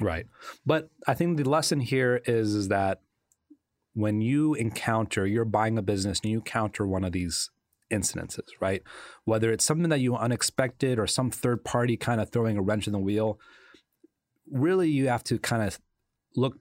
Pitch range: 105-130 Hz